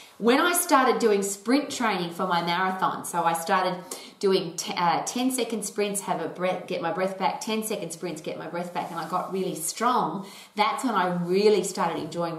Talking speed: 205 wpm